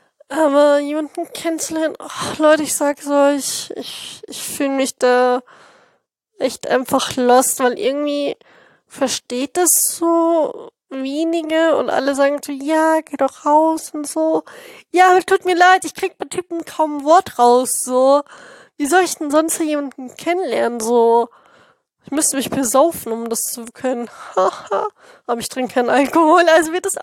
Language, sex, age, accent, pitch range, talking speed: German, female, 20-39, German, 250-340 Hz, 160 wpm